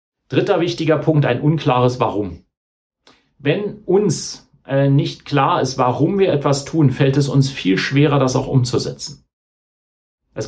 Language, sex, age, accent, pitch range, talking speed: German, male, 40-59, German, 130-155 Hz, 145 wpm